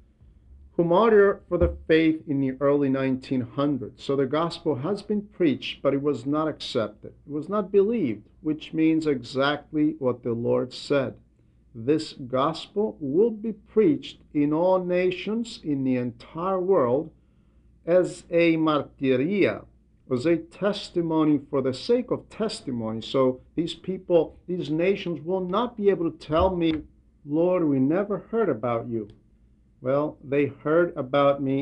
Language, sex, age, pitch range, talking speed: English, male, 50-69, 130-170 Hz, 145 wpm